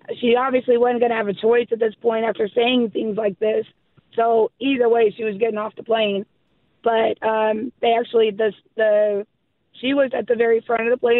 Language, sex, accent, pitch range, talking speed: English, female, American, 215-240 Hz, 215 wpm